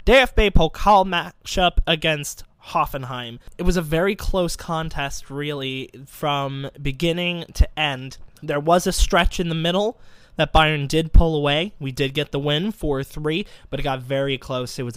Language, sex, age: English, male, 20-39